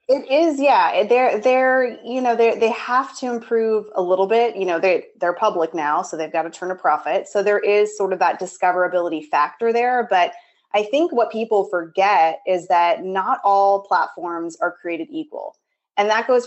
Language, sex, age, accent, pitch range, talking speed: English, female, 20-39, American, 180-230 Hz, 195 wpm